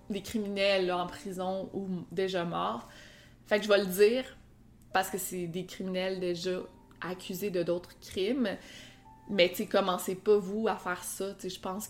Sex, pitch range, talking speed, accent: female, 185-245 Hz, 170 wpm, Canadian